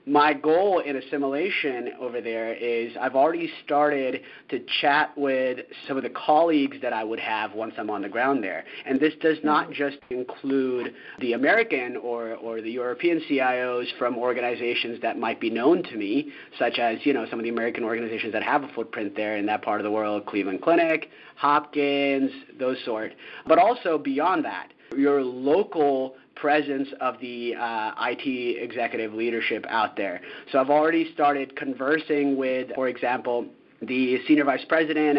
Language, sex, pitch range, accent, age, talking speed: English, male, 120-150 Hz, American, 30-49, 170 wpm